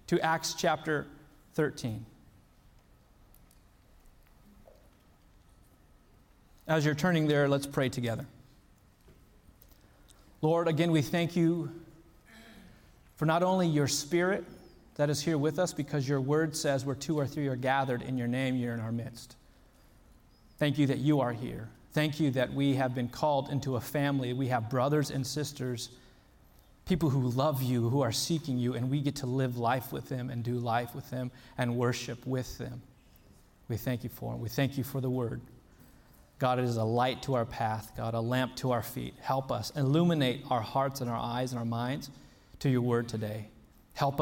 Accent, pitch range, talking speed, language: American, 115-145 Hz, 175 wpm, English